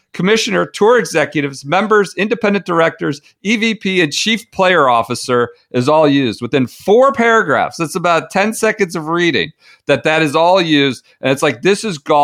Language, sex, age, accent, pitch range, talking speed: English, male, 40-59, American, 115-165 Hz, 165 wpm